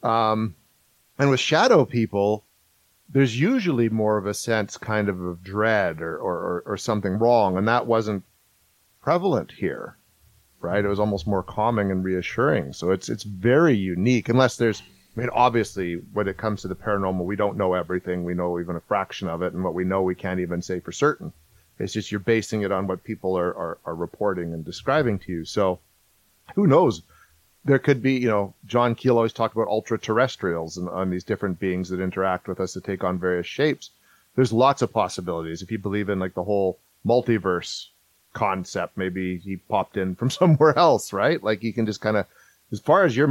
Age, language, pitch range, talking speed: 40-59, English, 90-115 Hz, 200 wpm